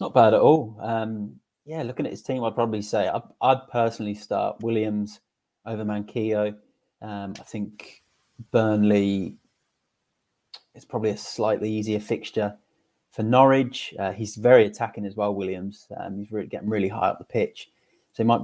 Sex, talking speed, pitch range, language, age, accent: male, 165 wpm, 105-115 Hz, English, 30-49, British